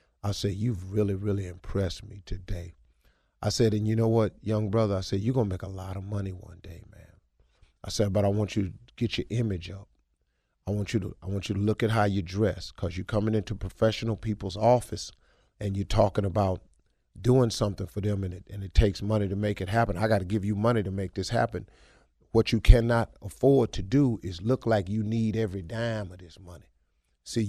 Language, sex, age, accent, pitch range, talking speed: English, male, 40-59, American, 95-115 Hz, 230 wpm